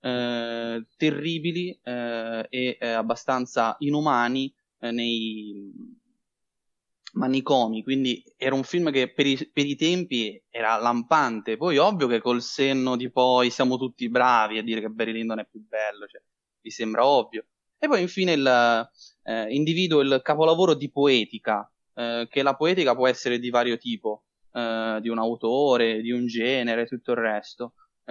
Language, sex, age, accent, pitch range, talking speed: Italian, male, 20-39, native, 115-140 Hz, 155 wpm